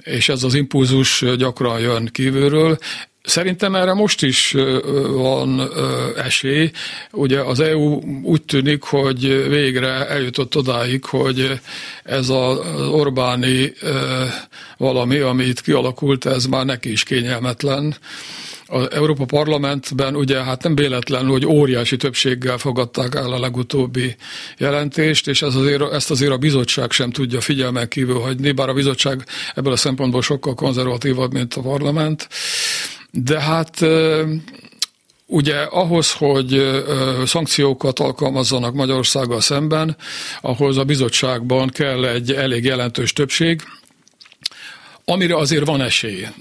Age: 50-69